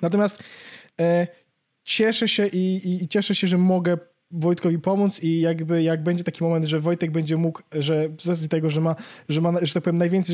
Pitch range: 170-205 Hz